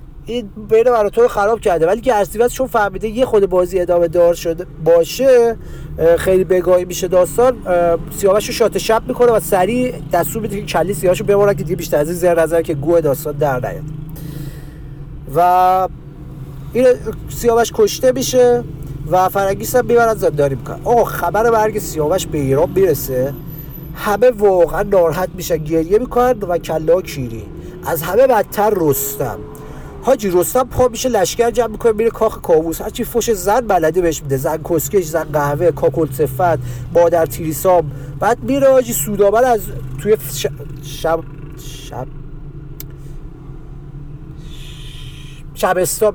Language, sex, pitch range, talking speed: Persian, male, 150-210 Hz, 145 wpm